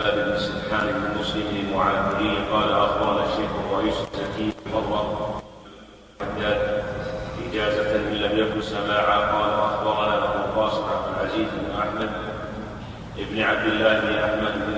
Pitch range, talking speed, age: 105-115 Hz, 110 wpm, 30-49